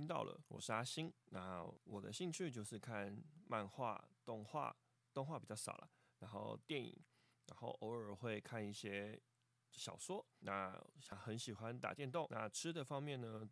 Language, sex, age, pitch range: Chinese, male, 20-39, 100-130 Hz